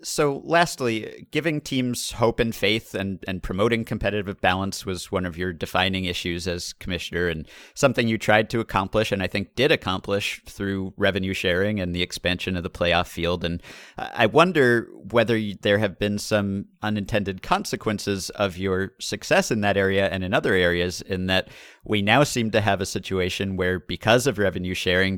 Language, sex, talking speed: English, male, 180 wpm